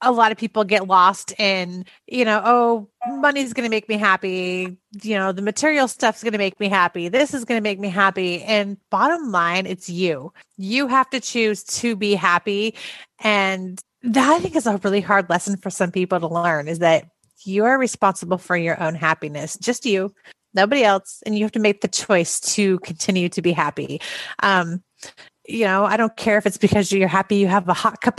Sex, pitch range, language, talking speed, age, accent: female, 185-230 Hz, English, 210 wpm, 30-49, American